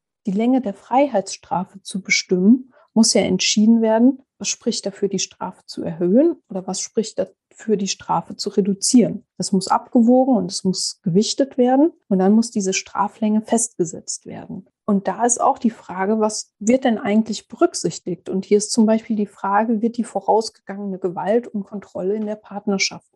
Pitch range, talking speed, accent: 195-235 Hz, 175 wpm, German